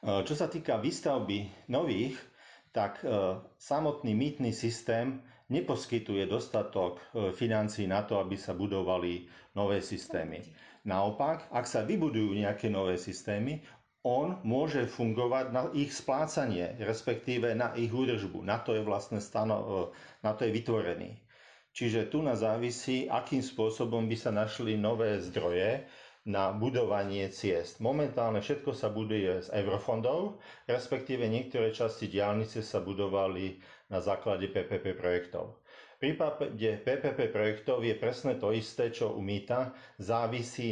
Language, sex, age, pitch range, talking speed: Slovak, male, 40-59, 100-120 Hz, 130 wpm